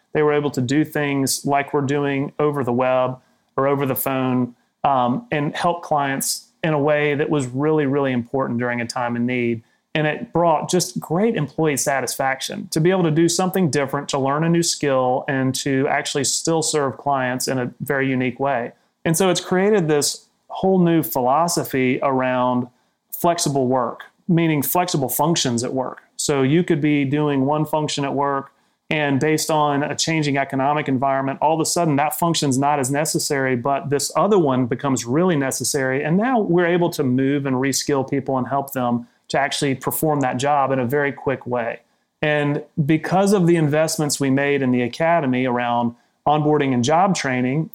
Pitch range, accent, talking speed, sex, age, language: 135-160 Hz, American, 185 wpm, male, 30-49, English